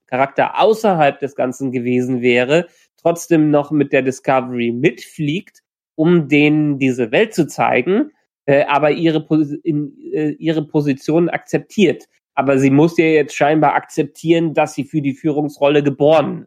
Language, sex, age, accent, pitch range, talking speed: German, male, 30-49, German, 130-165 Hz, 135 wpm